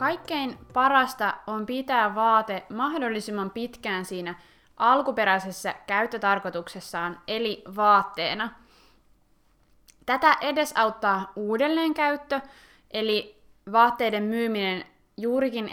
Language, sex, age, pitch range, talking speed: Finnish, female, 20-39, 200-245 Hz, 75 wpm